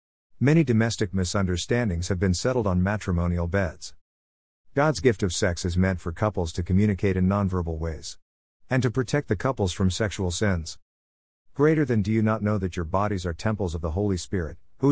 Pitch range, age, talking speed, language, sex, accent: 85-125 Hz, 50-69, 185 wpm, English, male, American